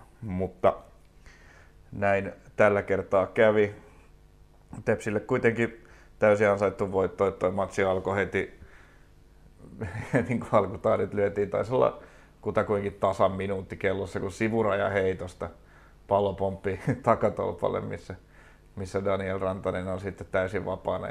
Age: 30-49